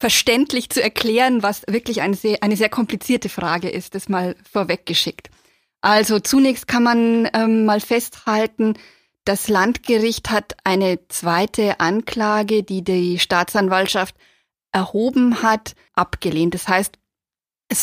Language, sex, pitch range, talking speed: German, female, 190-225 Hz, 120 wpm